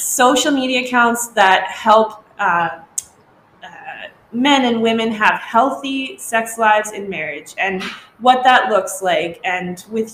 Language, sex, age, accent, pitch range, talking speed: English, female, 20-39, American, 195-255 Hz, 135 wpm